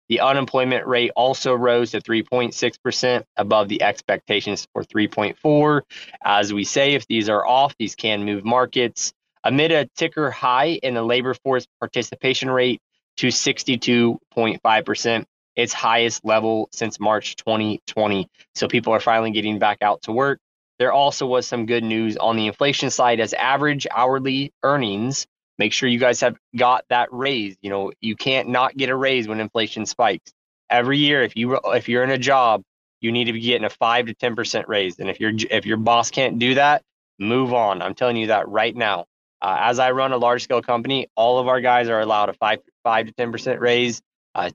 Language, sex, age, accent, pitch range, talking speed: English, male, 20-39, American, 110-130 Hz, 185 wpm